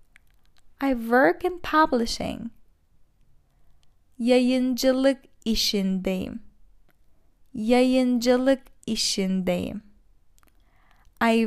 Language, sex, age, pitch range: Turkish, female, 10-29, 185-265 Hz